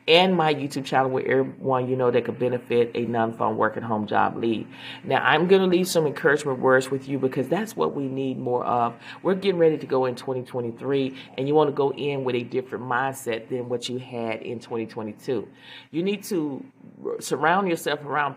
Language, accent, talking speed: English, American, 210 wpm